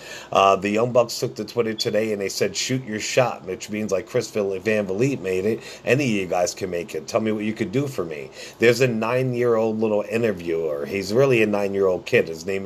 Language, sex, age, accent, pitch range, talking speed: English, male, 50-69, American, 95-120 Hz, 245 wpm